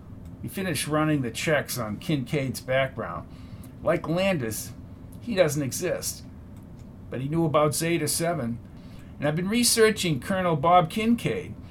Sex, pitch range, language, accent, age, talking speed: male, 120-180 Hz, English, American, 50-69, 130 wpm